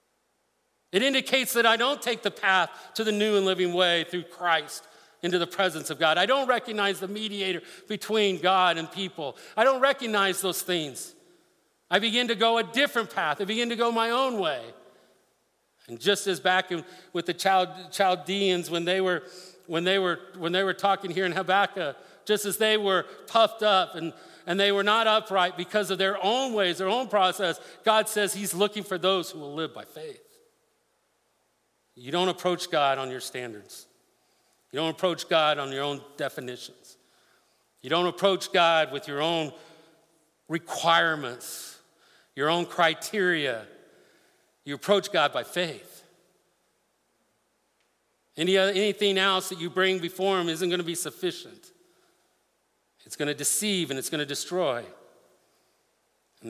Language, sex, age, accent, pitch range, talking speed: English, male, 50-69, American, 165-200 Hz, 160 wpm